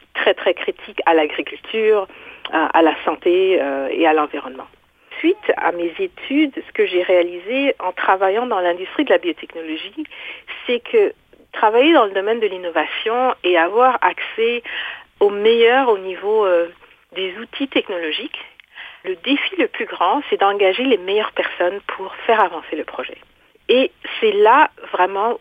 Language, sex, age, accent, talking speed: French, female, 50-69, French, 155 wpm